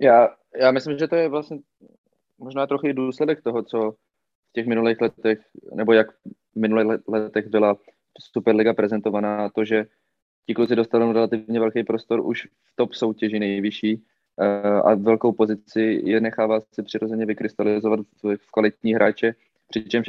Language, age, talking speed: Czech, 20-39, 150 wpm